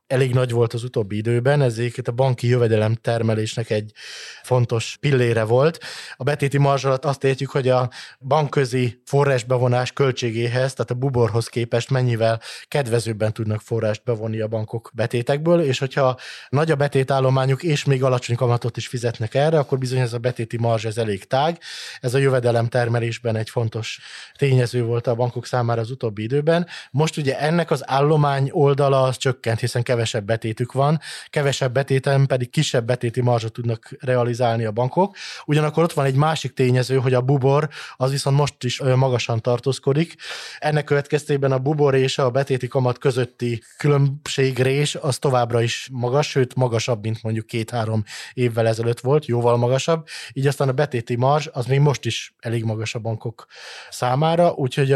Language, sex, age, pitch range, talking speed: Hungarian, male, 20-39, 120-140 Hz, 160 wpm